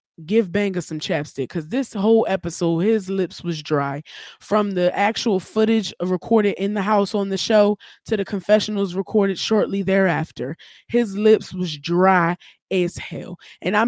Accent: American